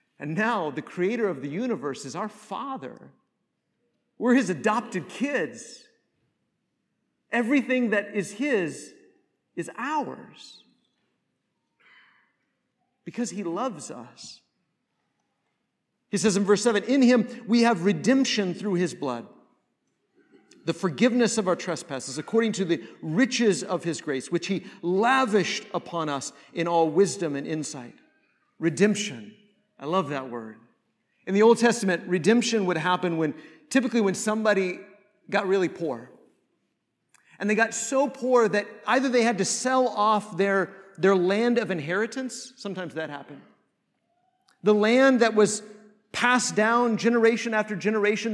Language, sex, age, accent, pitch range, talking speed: English, male, 50-69, American, 180-235 Hz, 135 wpm